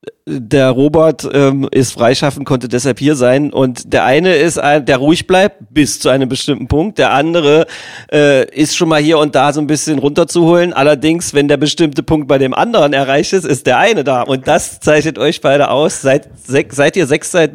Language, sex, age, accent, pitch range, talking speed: German, male, 40-59, German, 140-160 Hz, 205 wpm